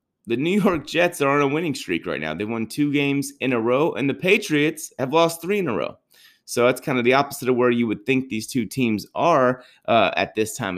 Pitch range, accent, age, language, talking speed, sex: 110-140 Hz, American, 30-49, English, 255 wpm, male